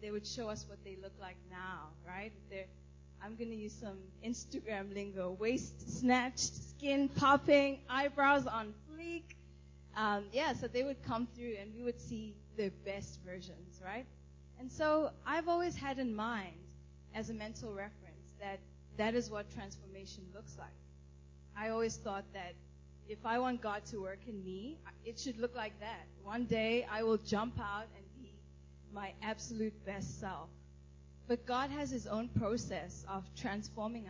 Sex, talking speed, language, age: female, 165 wpm, English, 20-39